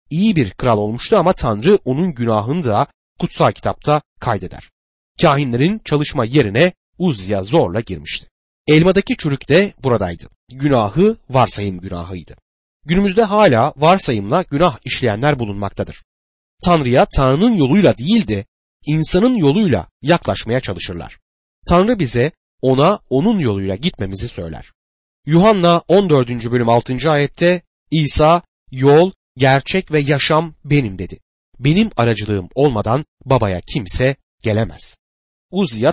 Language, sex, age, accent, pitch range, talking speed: Turkish, male, 30-49, native, 105-175 Hz, 110 wpm